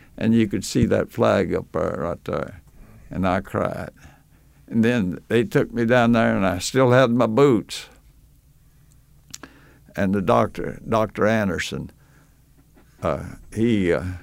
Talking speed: 145 wpm